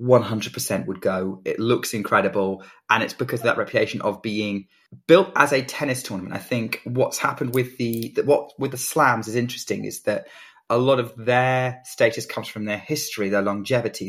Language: English